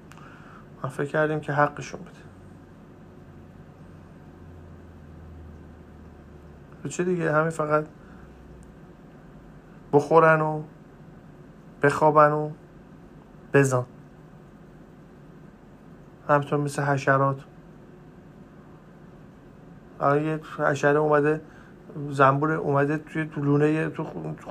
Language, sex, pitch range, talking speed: Persian, male, 145-175 Hz, 60 wpm